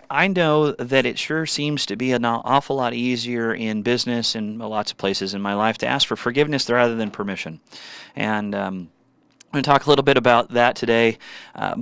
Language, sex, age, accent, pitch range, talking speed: English, male, 30-49, American, 110-145 Hz, 210 wpm